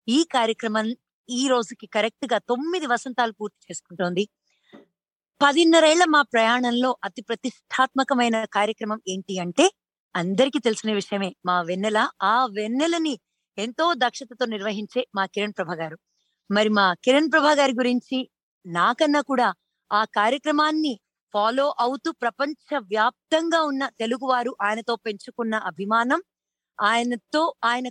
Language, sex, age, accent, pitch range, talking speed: Telugu, female, 20-39, native, 210-285 Hz, 110 wpm